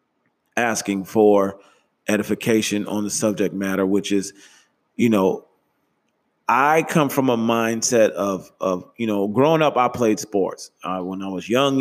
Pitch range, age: 95-120 Hz, 30-49